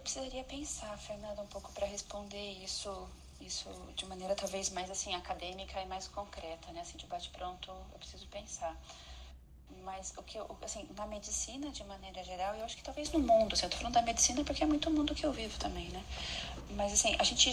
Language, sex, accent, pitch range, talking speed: Portuguese, female, Brazilian, 185-255 Hz, 210 wpm